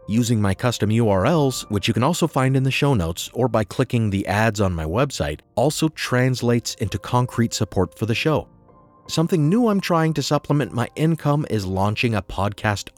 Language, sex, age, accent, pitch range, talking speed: English, male, 30-49, American, 100-130 Hz, 190 wpm